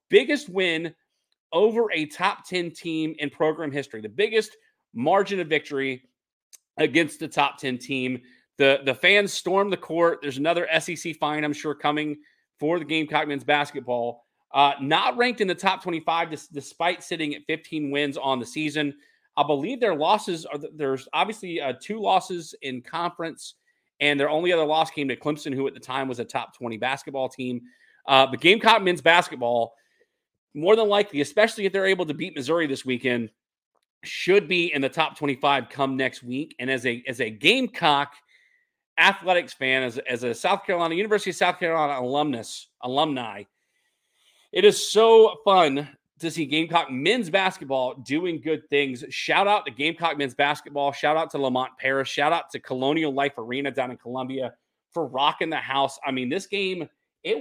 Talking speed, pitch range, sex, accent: 175 wpm, 135-185 Hz, male, American